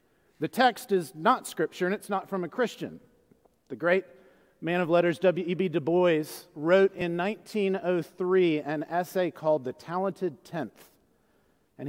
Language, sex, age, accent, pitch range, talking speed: English, male, 40-59, American, 160-200 Hz, 145 wpm